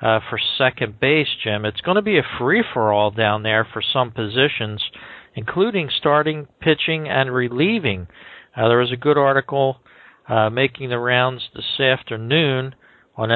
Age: 50-69